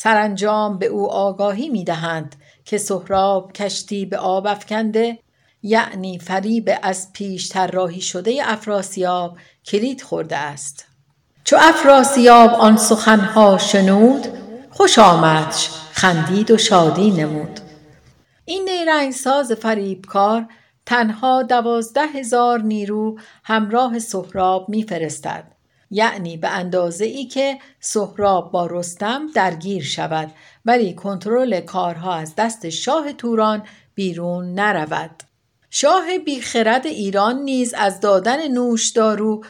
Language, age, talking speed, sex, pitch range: Persian, 60-79, 100 wpm, female, 185-235 Hz